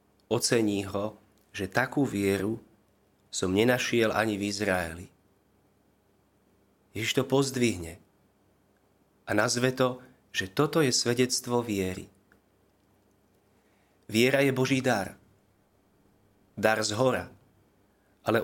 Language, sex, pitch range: Slovak, male, 100-125 Hz